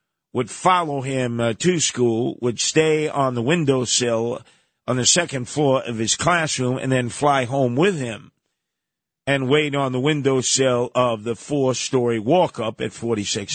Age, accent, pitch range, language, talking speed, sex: 50-69, American, 125-165 Hz, English, 155 wpm, male